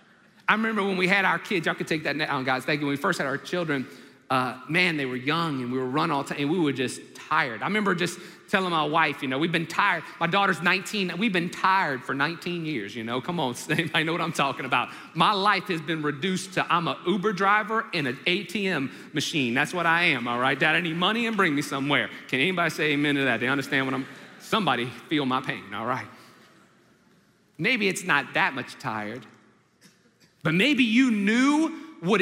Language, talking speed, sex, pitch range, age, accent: English, 230 wpm, male, 145-210 Hz, 40-59, American